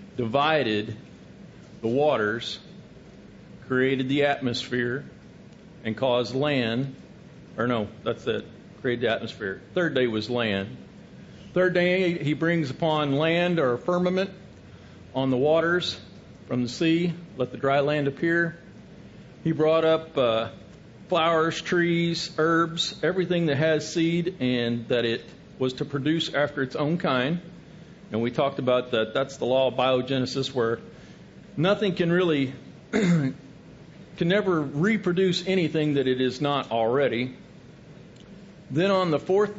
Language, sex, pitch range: English, male, 130-170 Hz